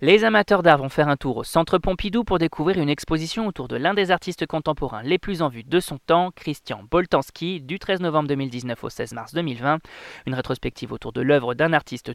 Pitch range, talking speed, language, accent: 145-190 Hz, 215 wpm, French, French